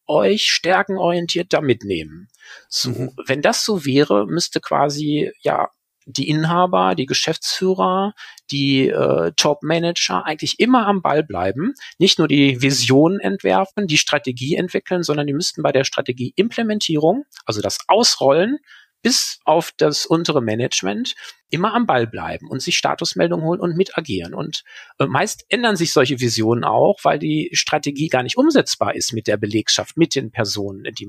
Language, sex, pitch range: German, male, 135-180 Hz